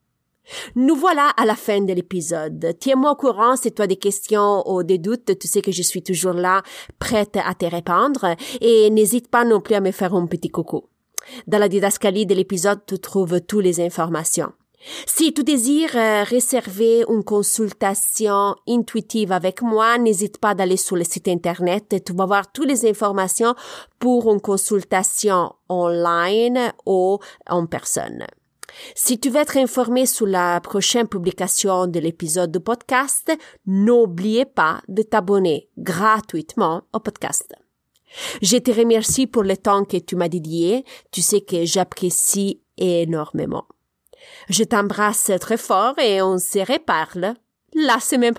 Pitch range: 185-230 Hz